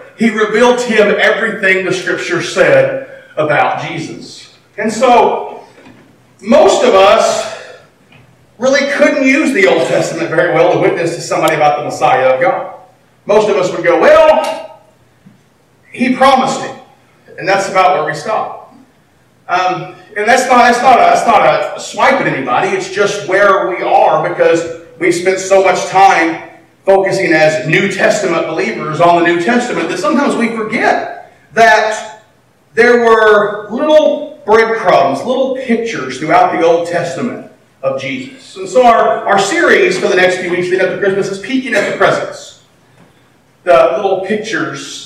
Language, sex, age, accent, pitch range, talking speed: English, male, 40-59, American, 180-240 Hz, 155 wpm